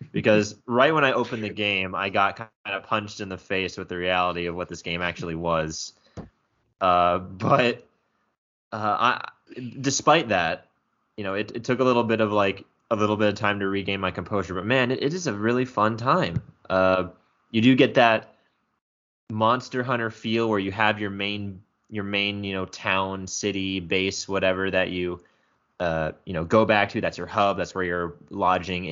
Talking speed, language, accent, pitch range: 195 wpm, English, American, 90-110 Hz